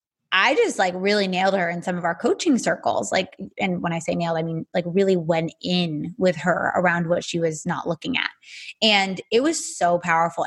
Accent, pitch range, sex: American, 185-255 Hz, female